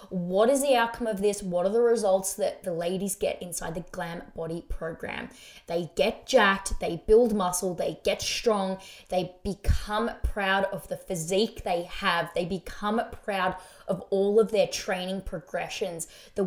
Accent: Australian